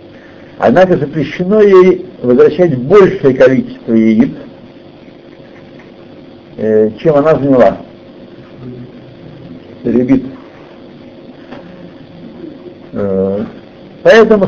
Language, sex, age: Russian, male, 60-79